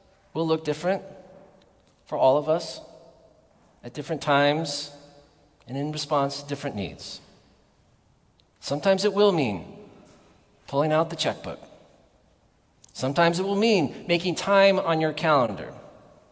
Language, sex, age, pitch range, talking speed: English, male, 40-59, 135-195 Hz, 120 wpm